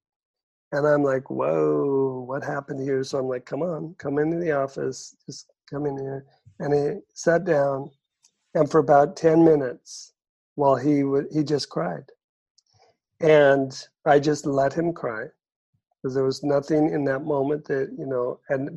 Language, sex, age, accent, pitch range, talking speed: English, male, 50-69, American, 140-165 Hz, 165 wpm